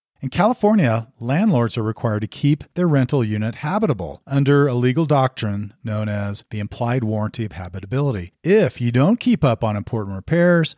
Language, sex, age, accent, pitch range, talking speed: English, male, 40-59, American, 110-150 Hz, 165 wpm